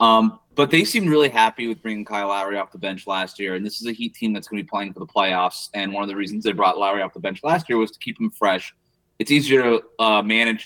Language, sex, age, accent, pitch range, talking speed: English, male, 30-49, American, 105-135 Hz, 295 wpm